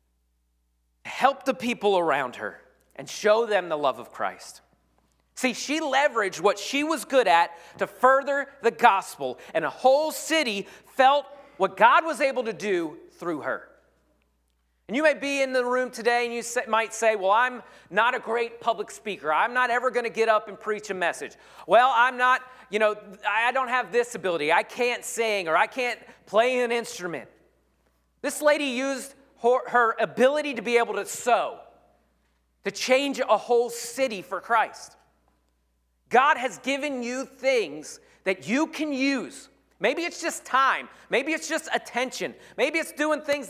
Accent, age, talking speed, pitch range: American, 40-59, 170 wpm, 190-270 Hz